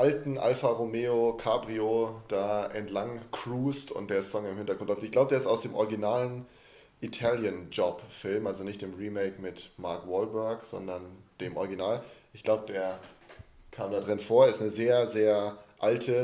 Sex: male